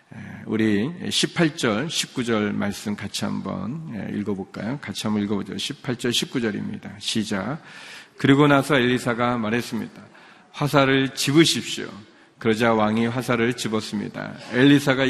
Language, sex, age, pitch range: Korean, male, 40-59, 110-135 Hz